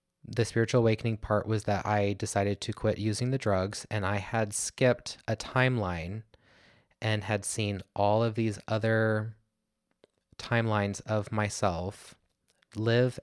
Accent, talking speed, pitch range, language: American, 135 wpm, 100-110 Hz, English